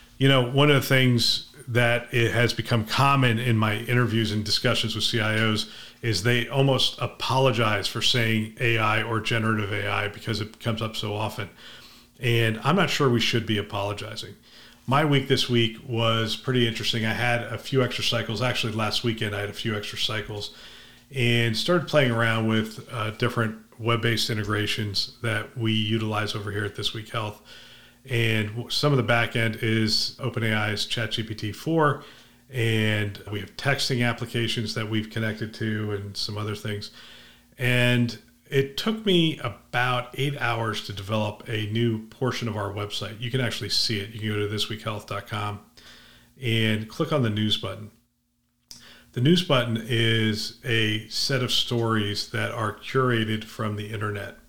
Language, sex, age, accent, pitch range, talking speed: English, male, 40-59, American, 110-120 Hz, 165 wpm